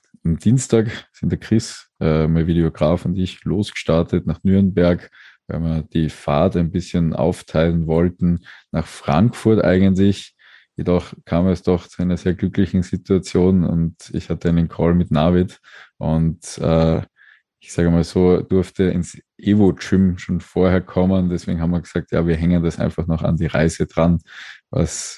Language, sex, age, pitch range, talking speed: German, male, 20-39, 85-95 Hz, 160 wpm